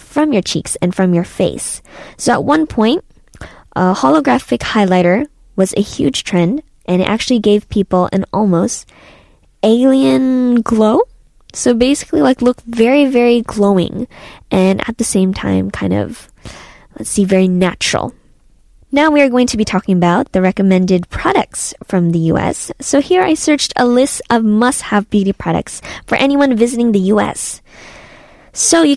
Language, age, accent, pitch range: Korean, 20-39, American, 190-265 Hz